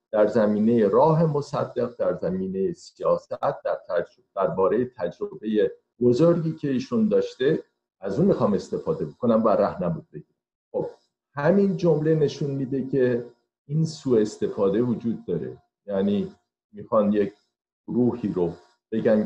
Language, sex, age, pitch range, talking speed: Persian, male, 50-69, 105-165 Hz, 130 wpm